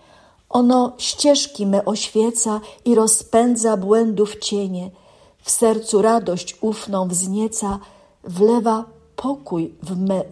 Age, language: 50-69, Polish